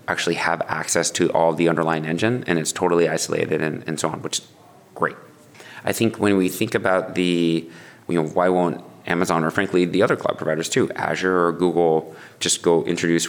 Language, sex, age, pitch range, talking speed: English, male, 30-49, 85-100 Hz, 200 wpm